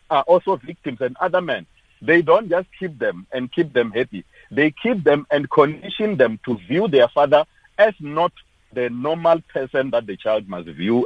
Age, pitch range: 50-69, 130-175 Hz